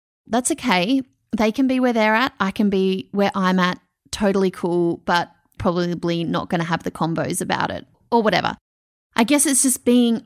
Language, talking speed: English, 195 wpm